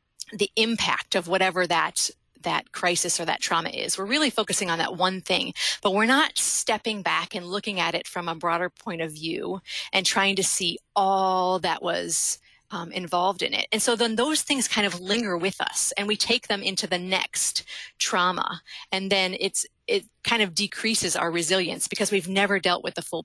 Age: 30-49